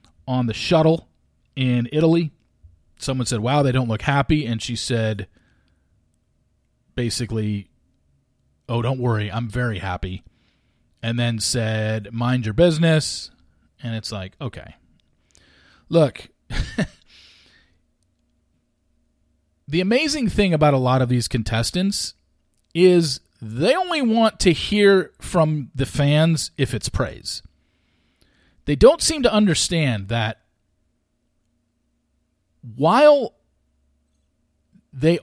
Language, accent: English, American